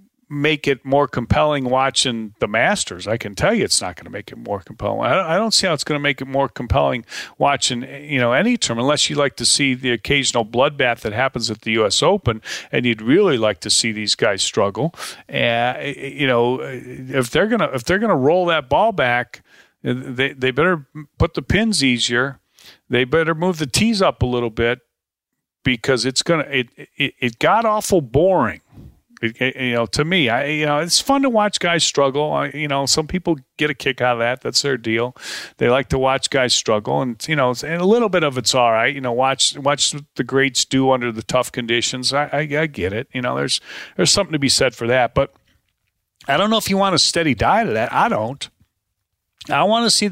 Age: 40-59